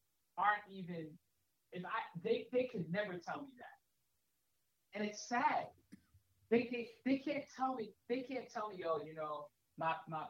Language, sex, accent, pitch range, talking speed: English, male, American, 160-235 Hz, 170 wpm